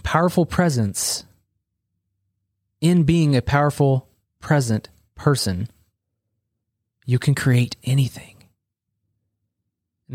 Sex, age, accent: male, 20-39, American